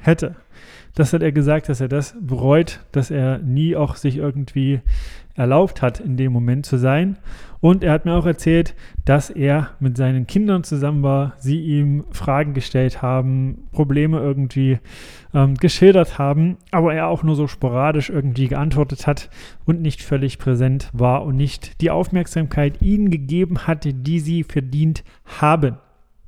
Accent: German